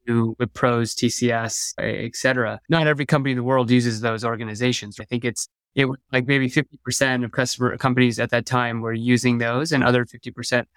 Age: 20-39